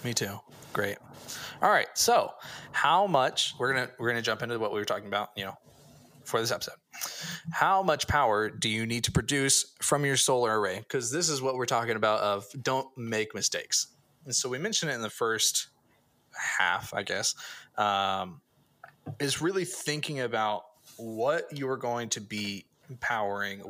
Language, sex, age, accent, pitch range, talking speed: English, male, 20-39, American, 105-135 Hz, 180 wpm